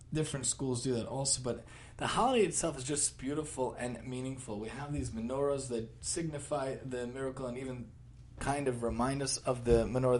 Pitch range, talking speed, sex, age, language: 115-135 Hz, 180 wpm, male, 30-49, English